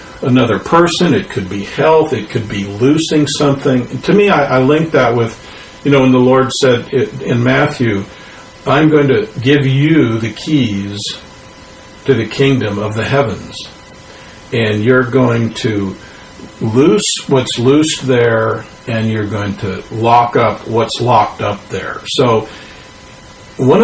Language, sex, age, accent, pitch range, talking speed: English, male, 50-69, American, 110-145 Hz, 150 wpm